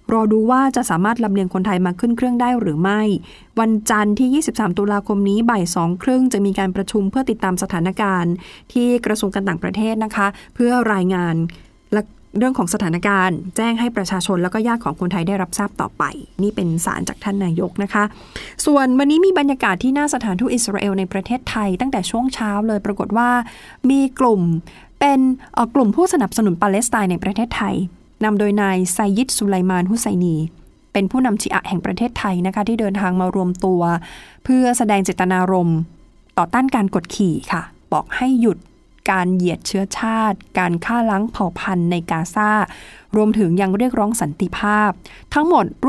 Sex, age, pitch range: female, 20-39, 185-235 Hz